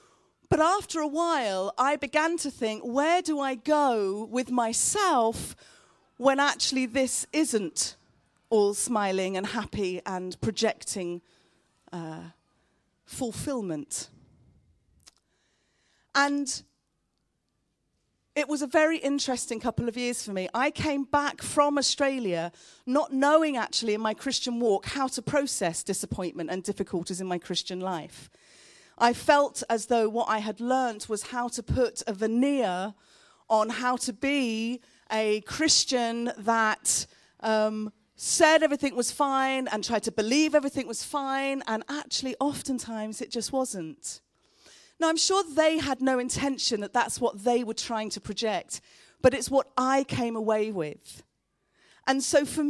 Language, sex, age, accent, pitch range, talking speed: English, female, 40-59, British, 215-280 Hz, 140 wpm